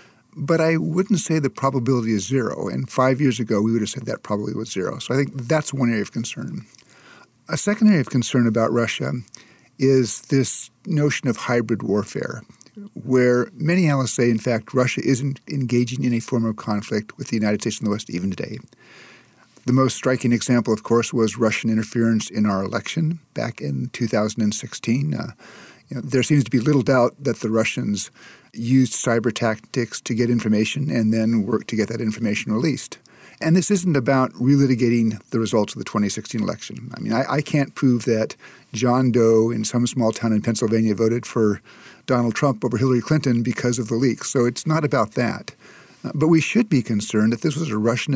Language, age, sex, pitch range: English, 50-69, male, 110-135 Hz